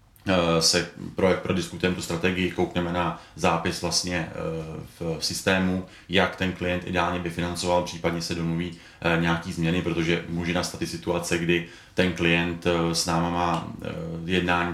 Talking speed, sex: 140 wpm, male